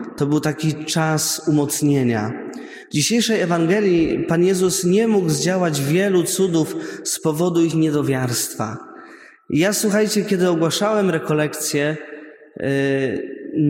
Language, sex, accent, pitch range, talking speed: Polish, male, native, 140-210 Hz, 110 wpm